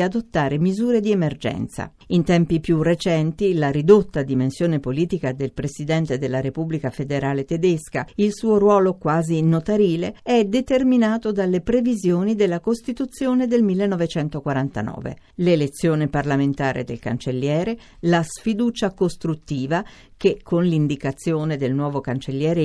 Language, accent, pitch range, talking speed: Italian, native, 145-205 Hz, 115 wpm